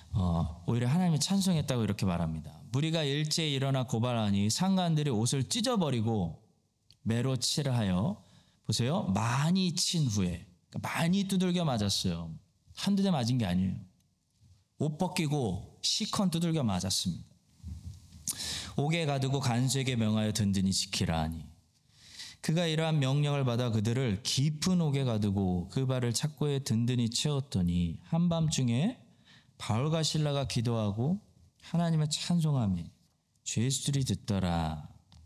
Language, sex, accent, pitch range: Korean, male, native, 95-155 Hz